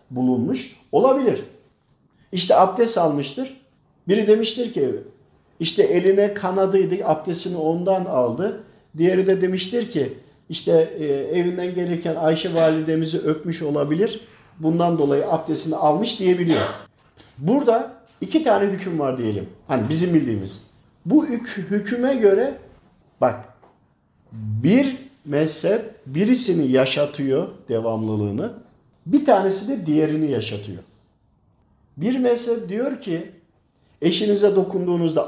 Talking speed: 100 wpm